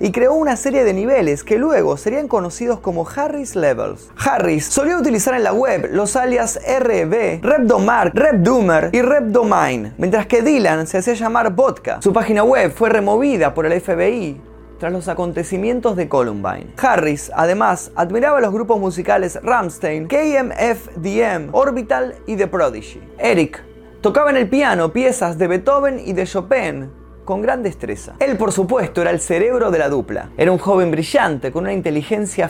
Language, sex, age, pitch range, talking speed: Spanish, male, 20-39, 170-250 Hz, 160 wpm